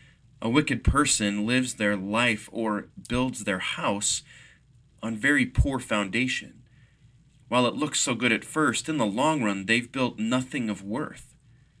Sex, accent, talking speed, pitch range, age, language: male, American, 155 wpm, 105-135 Hz, 30-49, English